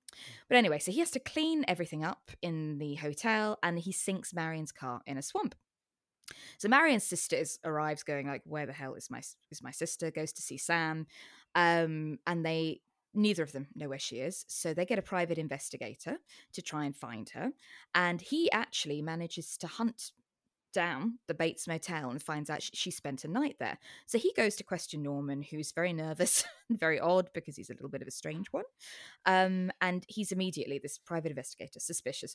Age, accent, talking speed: 20-39, British, 200 wpm